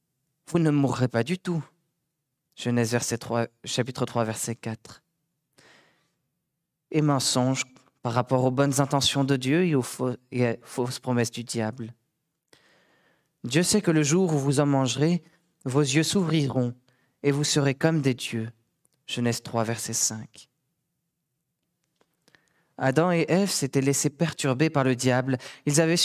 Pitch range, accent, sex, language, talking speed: 130-160 Hz, French, male, French, 155 wpm